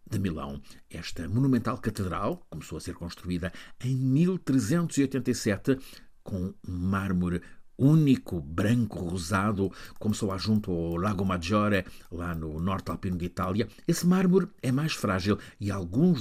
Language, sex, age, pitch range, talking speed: Portuguese, male, 50-69, 95-130 Hz, 135 wpm